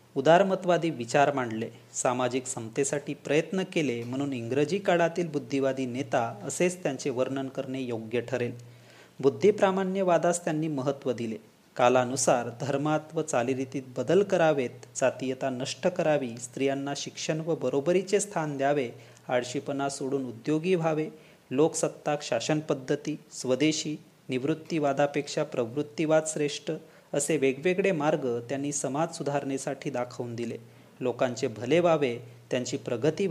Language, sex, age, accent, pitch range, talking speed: Marathi, male, 30-49, native, 130-160 Hz, 110 wpm